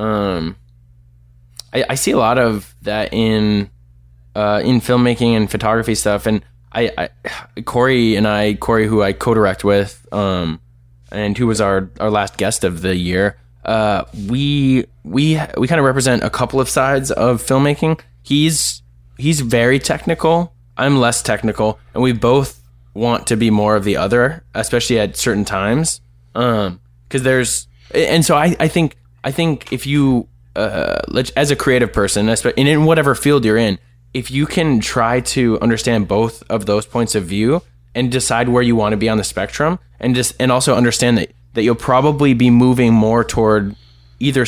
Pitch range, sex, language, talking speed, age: 105-125 Hz, male, English, 175 wpm, 20-39